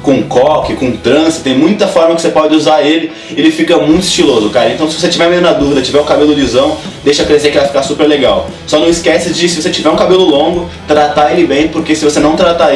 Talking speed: 250 wpm